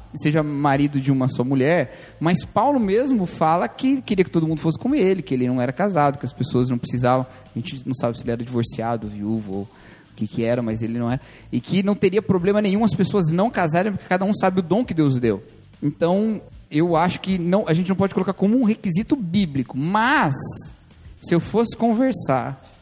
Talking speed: 220 wpm